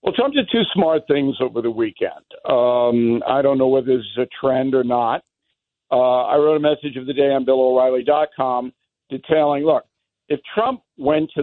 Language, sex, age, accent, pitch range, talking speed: English, male, 60-79, American, 135-185 Hz, 190 wpm